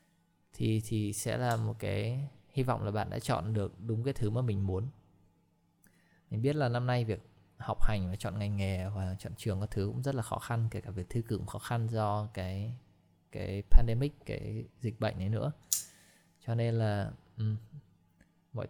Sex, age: male, 20-39